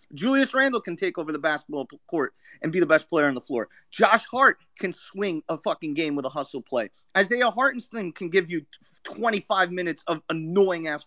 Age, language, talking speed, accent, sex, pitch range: 30-49, English, 195 wpm, American, male, 195-280 Hz